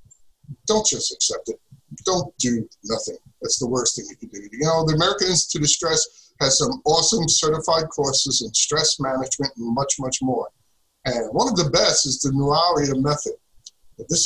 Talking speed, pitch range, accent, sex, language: 180 wpm, 130-170 Hz, American, male, English